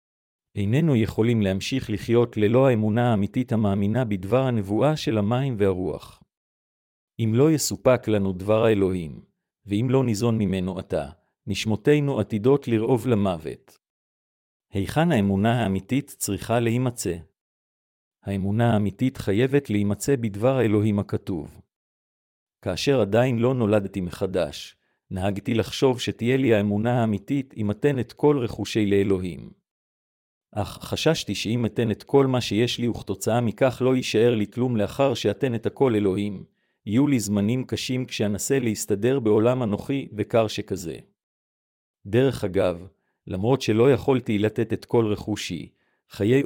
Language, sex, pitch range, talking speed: Hebrew, male, 100-125 Hz, 125 wpm